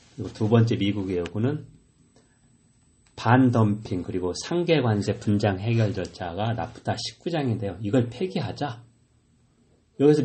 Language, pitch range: Korean, 100-130 Hz